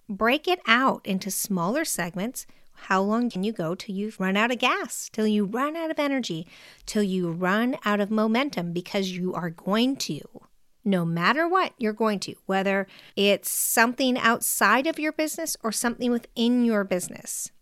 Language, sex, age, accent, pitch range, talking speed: English, female, 50-69, American, 185-250 Hz, 175 wpm